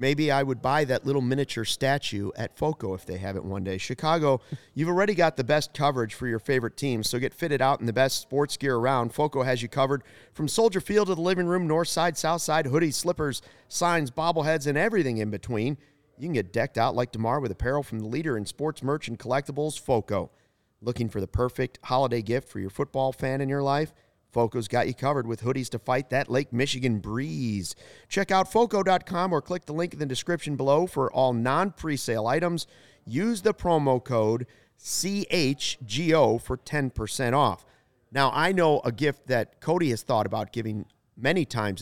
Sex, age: male, 40-59